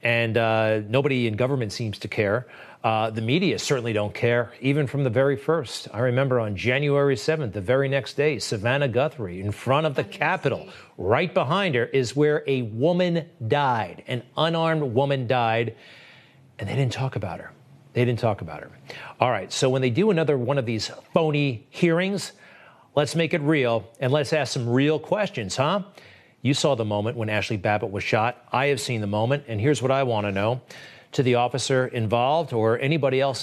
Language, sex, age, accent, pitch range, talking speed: English, male, 40-59, American, 115-150 Hz, 195 wpm